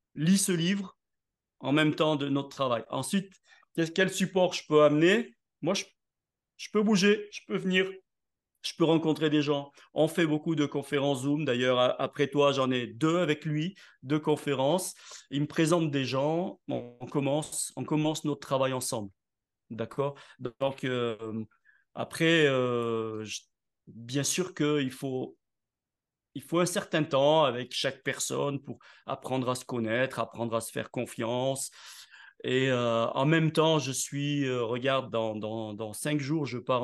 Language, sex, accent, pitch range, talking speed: French, male, French, 120-155 Hz, 165 wpm